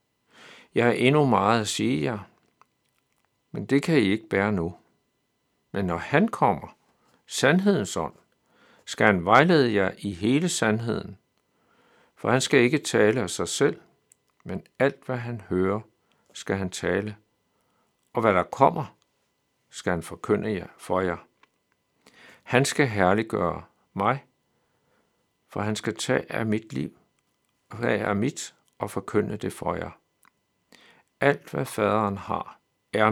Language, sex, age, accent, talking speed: Danish, male, 60-79, native, 140 wpm